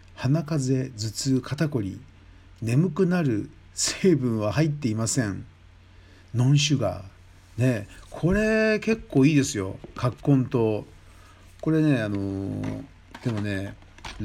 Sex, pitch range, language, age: male, 95-145 Hz, Japanese, 50-69